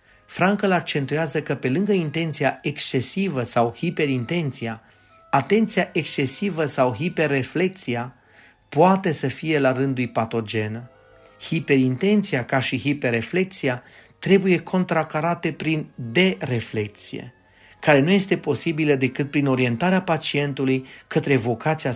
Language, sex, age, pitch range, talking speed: Romanian, male, 30-49, 125-165 Hz, 100 wpm